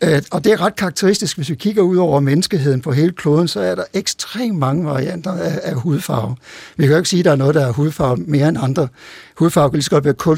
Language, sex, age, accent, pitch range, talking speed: Danish, male, 60-79, native, 140-175 Hz, 250 wpm